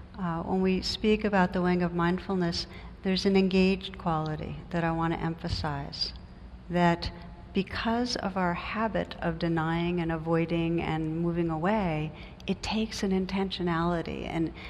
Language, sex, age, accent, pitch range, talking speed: English, female, 60-79, American, 165-195 Hz, 145 wpm